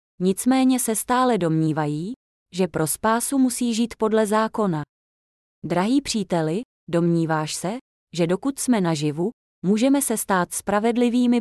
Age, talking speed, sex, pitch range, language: 20-39, 120 wpm, female, 170-245 Hz, Czech